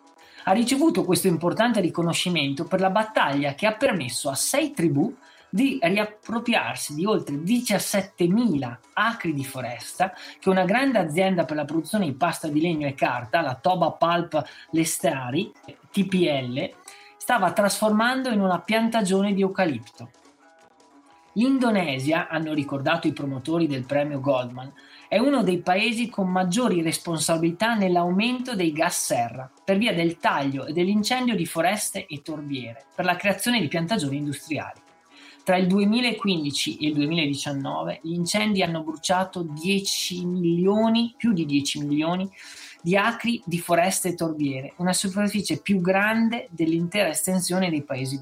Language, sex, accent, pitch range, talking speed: Italian, male, native, 155-205 Hz, 140 wpm